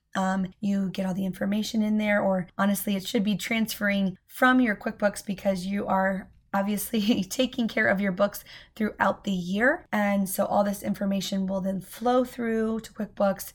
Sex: female